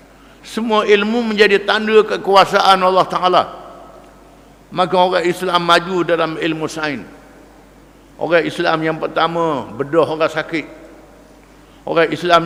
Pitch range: 170-205 Hz